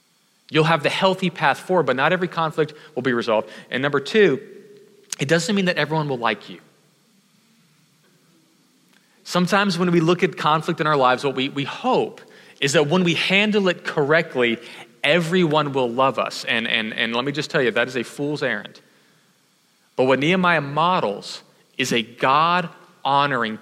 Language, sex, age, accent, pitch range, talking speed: English, male, 30-49, American, 130-175 Hz, 170 wpm